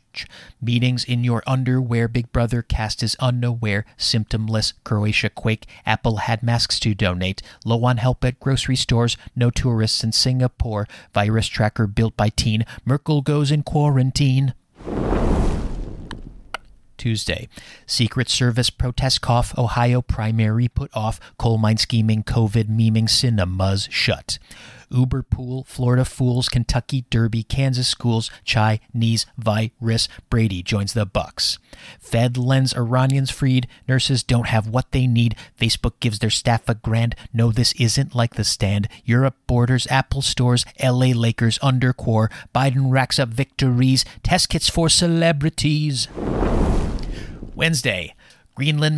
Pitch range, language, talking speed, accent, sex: 115-145 Hz, English, 130 wpm, American, male